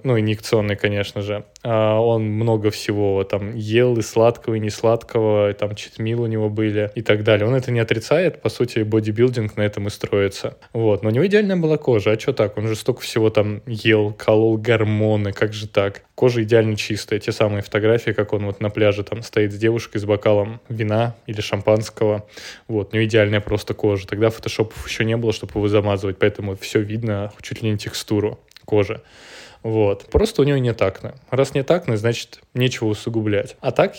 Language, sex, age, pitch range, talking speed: Russian, male, 20-39, 105-125 Hz, 200 wpm